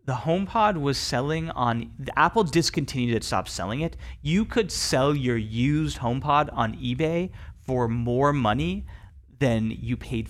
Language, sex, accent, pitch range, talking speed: English, male, American, 115-145 Hz, 150 wpm